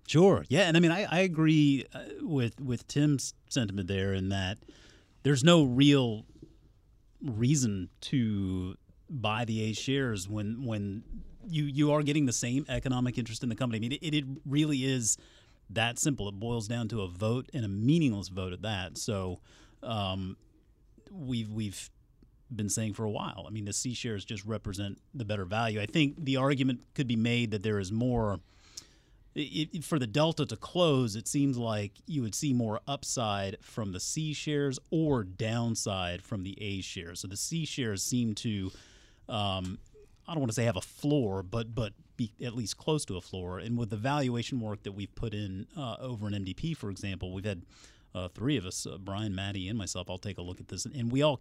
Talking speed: 200 wpm